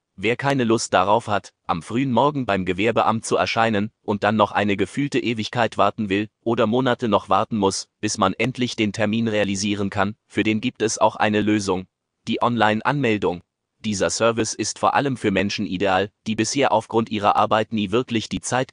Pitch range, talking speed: 100-115 Hz, 185 wpm